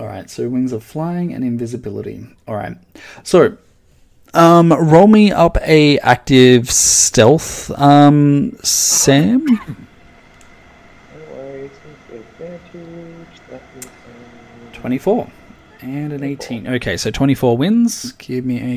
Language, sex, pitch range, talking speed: English, male, 115-160 Hz, 100 wpm